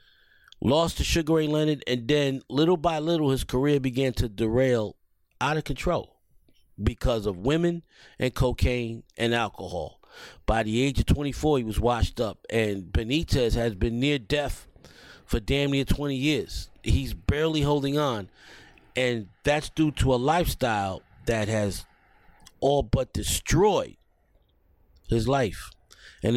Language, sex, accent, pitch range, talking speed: English, male, American, 110-145 Hz, 145 wpm